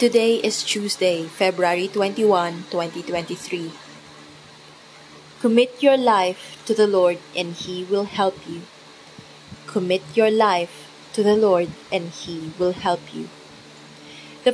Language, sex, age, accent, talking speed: English, female, 20-39, Filipino, 120 wpm